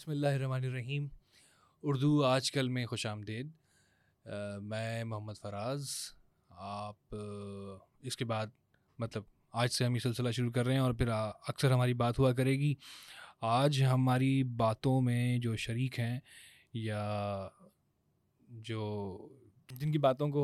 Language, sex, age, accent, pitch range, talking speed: English, male, 20-39, Indian, 110-135 Hz, 140 wpm